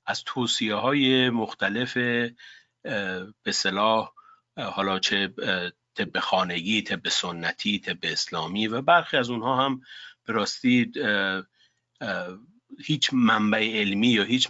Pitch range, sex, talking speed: 100-120 Hz, male, 100 wpm